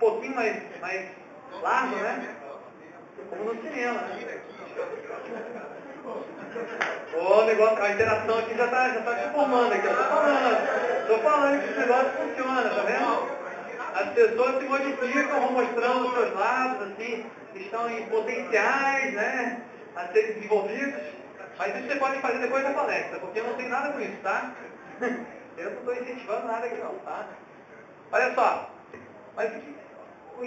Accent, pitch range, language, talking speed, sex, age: Brazilian, 215-275 Hz, Portuguese, 150 wpm, male, 40-59